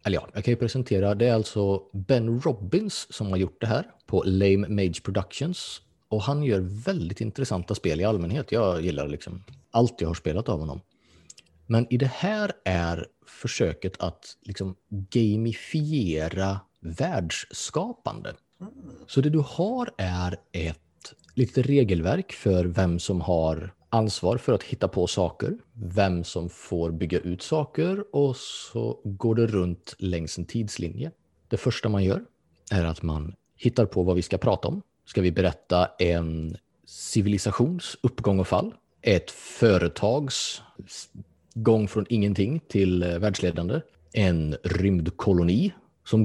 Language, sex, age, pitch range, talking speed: Swedish, male, 30-49, 90-120 Hz, 145 wpm